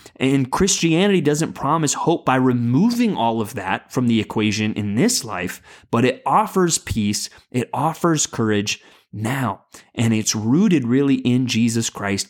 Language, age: English, 30-49